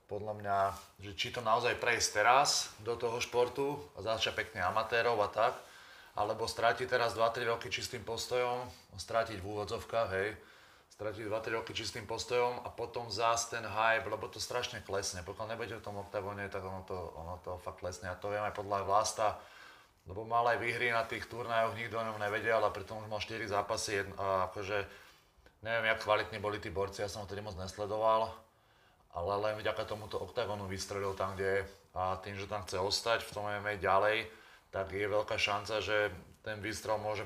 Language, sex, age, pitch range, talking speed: Slovak, male, 30-49, 100-115 Hz, 190 wpm